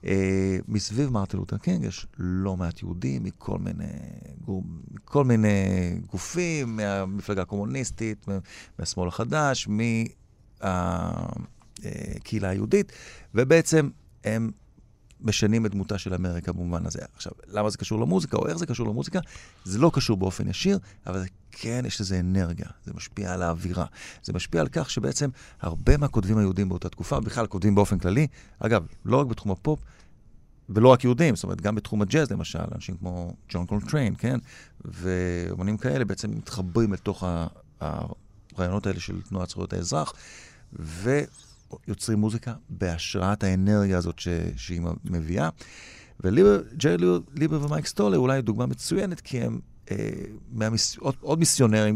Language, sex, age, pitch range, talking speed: Hebrew, male, 40-59, 95-120 Hz, 140 wpm